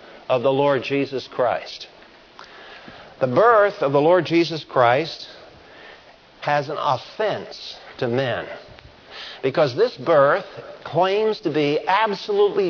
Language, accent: English, American